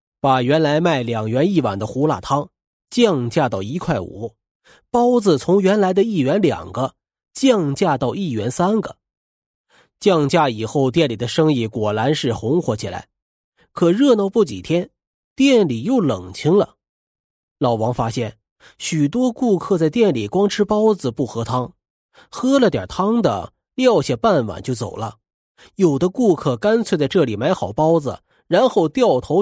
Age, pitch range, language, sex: 30-49, 120-195 Hz, Chinese, male